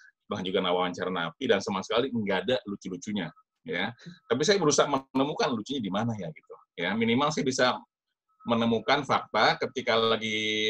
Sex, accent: male, native